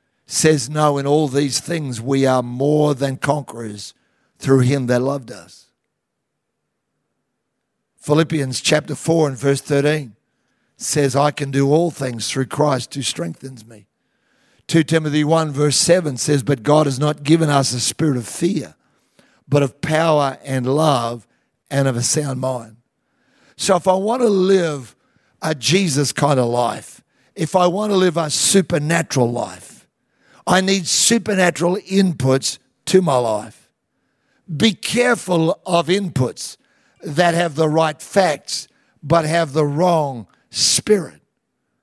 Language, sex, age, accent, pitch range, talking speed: English, male, 50-69, Australian, 140-185 Hz, 140 wpm